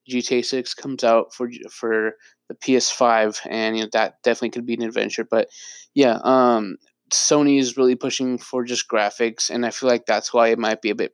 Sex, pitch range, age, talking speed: male, 110-130 Hz, 20-39, 205 wpm